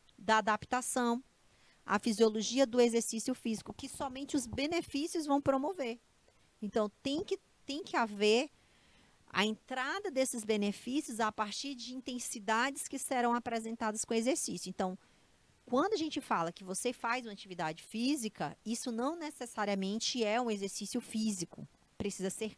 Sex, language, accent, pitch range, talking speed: female, Portuguese, Brazilian, 180-235 Hz, 135 wpm